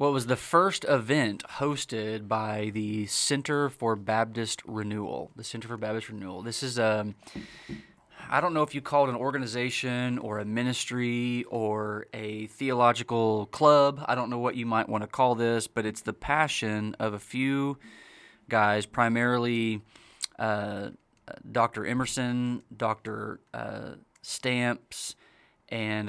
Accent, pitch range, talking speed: American, 110-130 Hz, 145 wpm